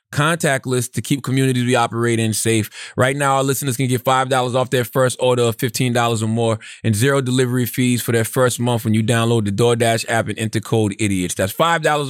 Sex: male